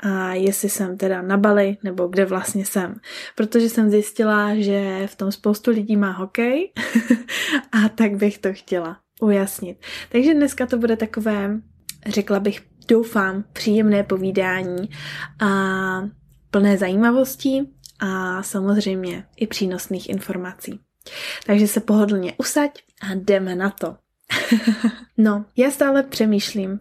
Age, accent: 20-39, native